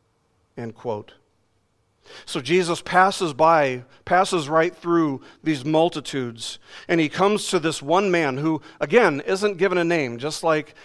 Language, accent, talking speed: English, American, 145 wpm